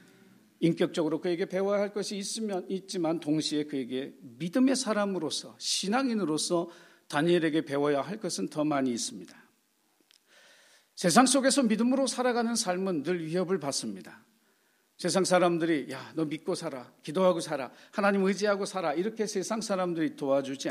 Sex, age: male, 50-69